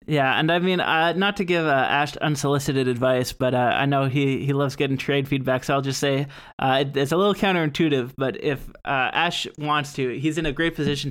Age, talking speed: 20-39, 230 wpm